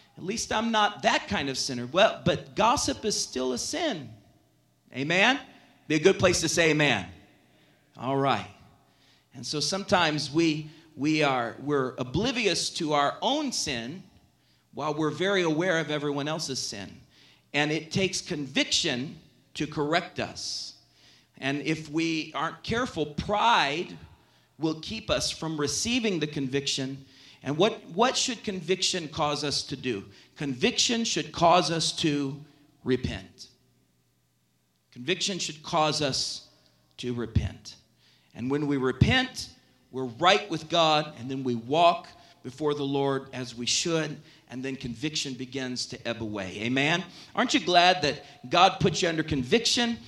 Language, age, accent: English, 40-59, American